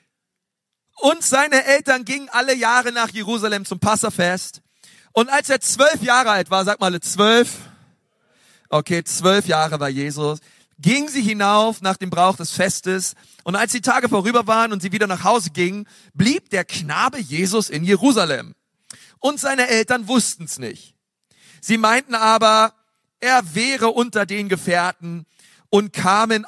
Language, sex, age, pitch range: German, male, 40-59, 175-230 Hz